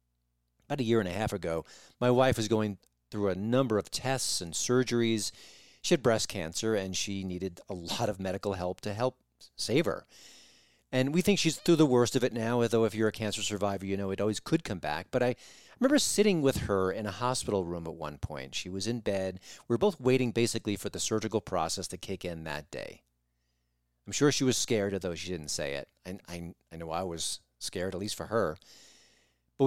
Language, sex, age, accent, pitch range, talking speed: English, male, 40-59, American, 85-120 Hz, 225 wpm